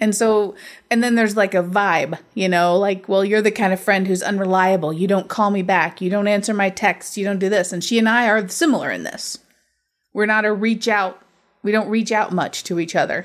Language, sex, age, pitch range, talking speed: English, female, 30-49, 190-225 Hz, 245 wpm